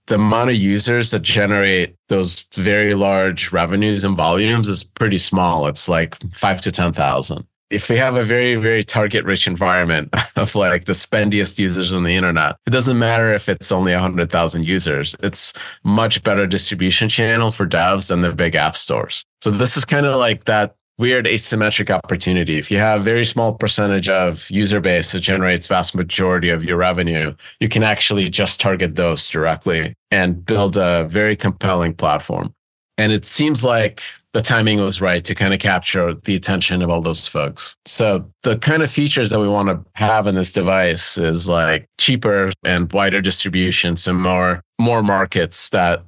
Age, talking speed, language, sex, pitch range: 30-49, 180 wpm, English, male, 90-105 Hz